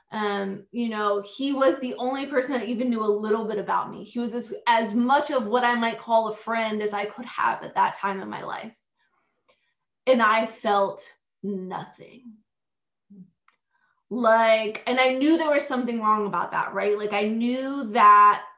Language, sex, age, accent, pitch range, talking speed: English, female, 20-39, American, 205-235 Hz, 185 wpm